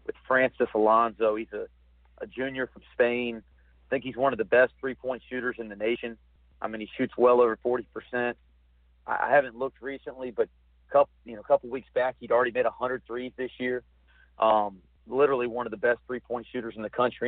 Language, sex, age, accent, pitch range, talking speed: English, male, 40-59, American, 105-120 Hz, 200 wpm